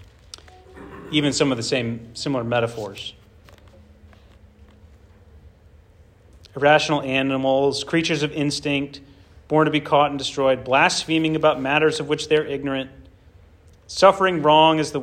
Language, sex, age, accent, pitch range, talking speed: English, male, 40-59, American, 105-145 Hz, 115 wpm